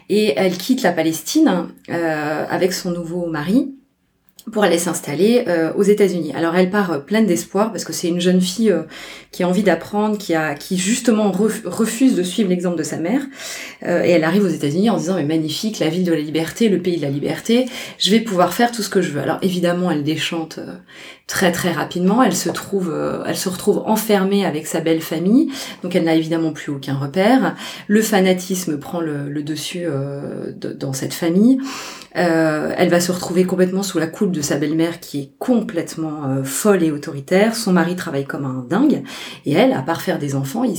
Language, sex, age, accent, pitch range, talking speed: French, female, 20-39, French, 160-205 Hz, 215 wpm